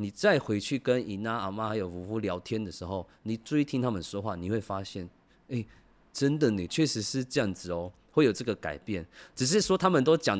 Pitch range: 95-145 Hz